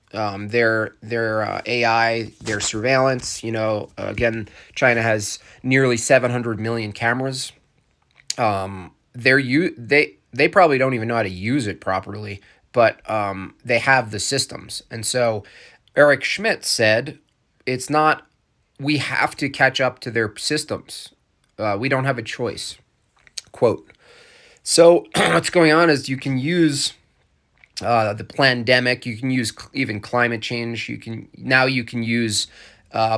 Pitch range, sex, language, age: 110-135 Hz, male, English, 20-39